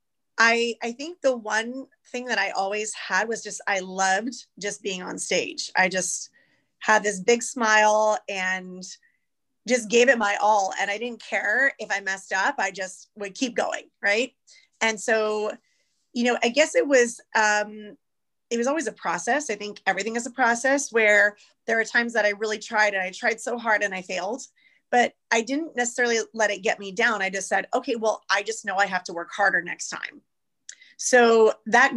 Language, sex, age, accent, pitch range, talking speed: English, female, 30-49, American, 195-235 Hz, 200 wpm